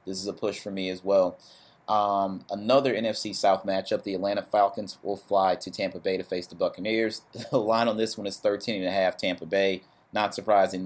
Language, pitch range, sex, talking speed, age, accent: English, 95-105 Hz, male, 215 wpm, 30-49, American